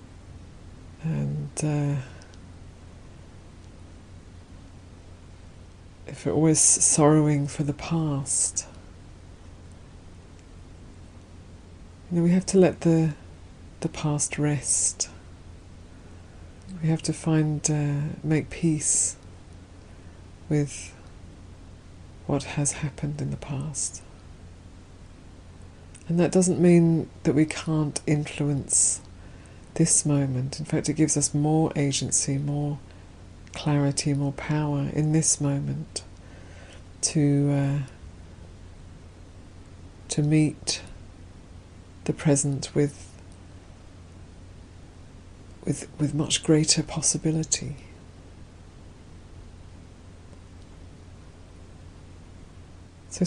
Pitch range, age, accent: 90-145 Hz, 50-69, British